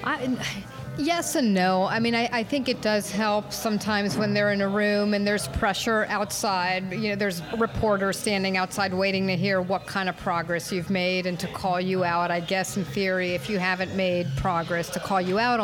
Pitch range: 185-210 Hz